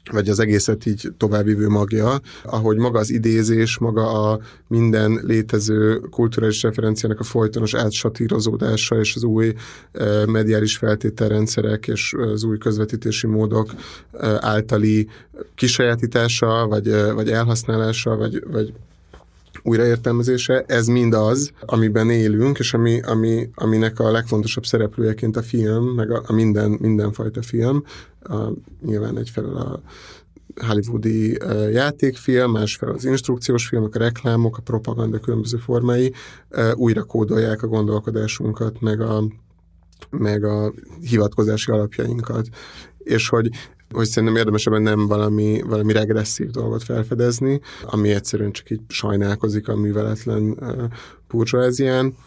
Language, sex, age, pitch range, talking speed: Hungarian, male, 30-49, 110-115 Hz, 115 wpm